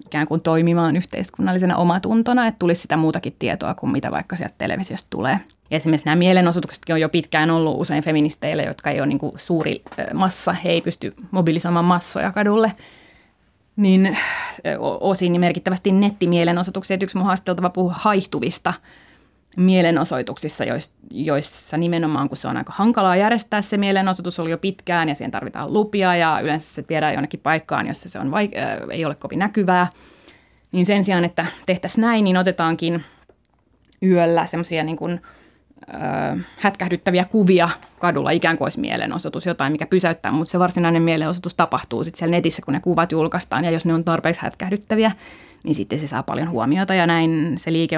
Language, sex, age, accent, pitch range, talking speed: Finnish, female, 30-49, native, 160-190 Hz, 155 wpm